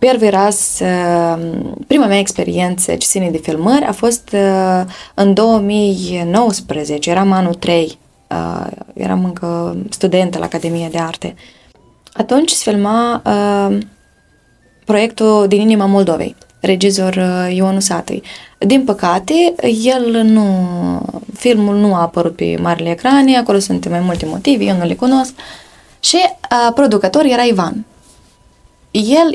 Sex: female